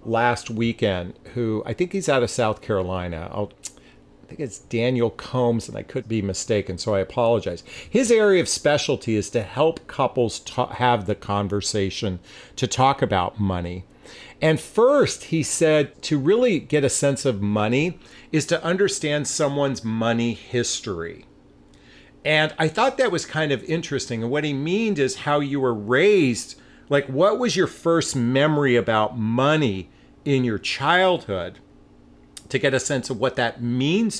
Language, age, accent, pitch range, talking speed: English, 40-59, American, 105-150 Hz, 165 wpm